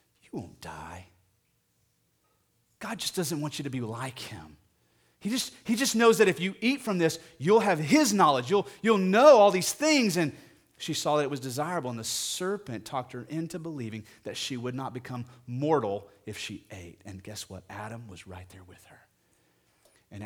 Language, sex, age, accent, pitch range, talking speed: English, male, 30-49, American, 105-170 Hz, 195 wpm